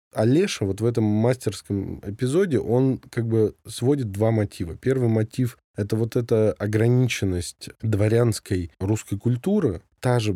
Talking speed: 135 wpm